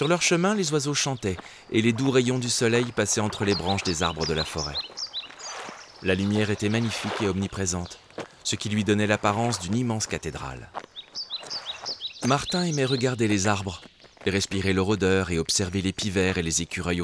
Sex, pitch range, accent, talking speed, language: male, 95-130 Hz, French, 175 wpm, French